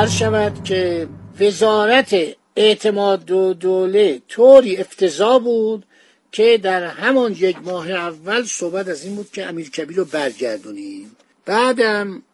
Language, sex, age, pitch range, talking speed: Persian, male, 60-79, 180-240 Hz, 110 wpm